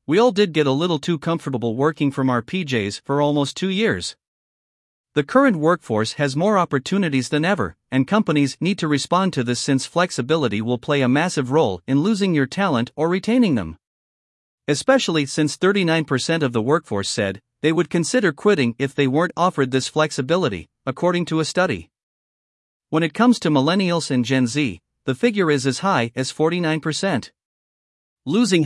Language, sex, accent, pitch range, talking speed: English, male, American, 130-175 Hz, 170 wpm